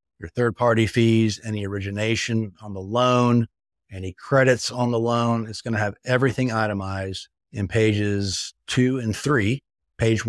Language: English